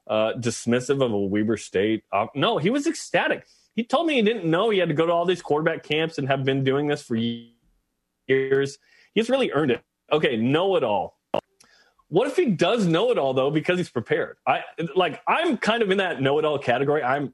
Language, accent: English, American